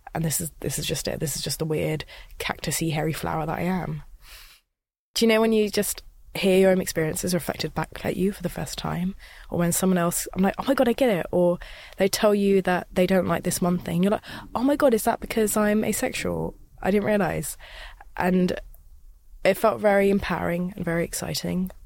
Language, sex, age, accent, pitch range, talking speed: English, female, 20-39, British, 160-200 Hz, 220 wpm